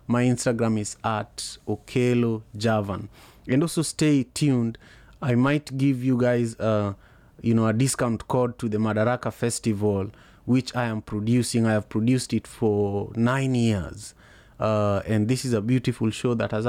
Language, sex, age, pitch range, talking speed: English, male, 30-49, 110-125 Hz, 155 wpm